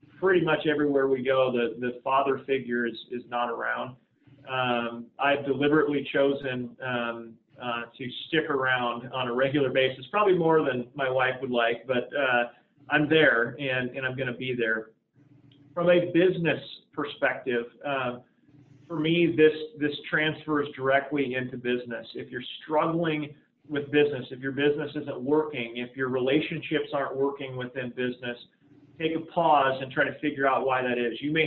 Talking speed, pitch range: 165 wpm, 130-155 Hz